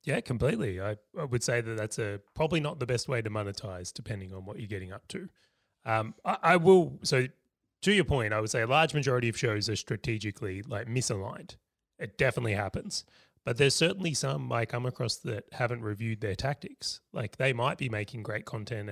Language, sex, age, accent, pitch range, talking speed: English, male, 30-49, Australian, 105-130 Hz, 205 wpm